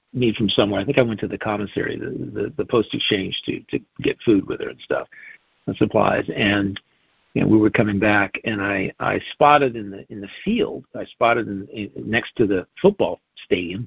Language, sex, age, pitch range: English, male, 50-69, 100-130 Hz